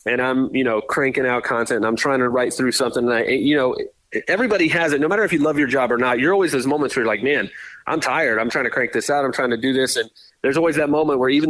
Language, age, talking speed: English, 30-49, 305 wpm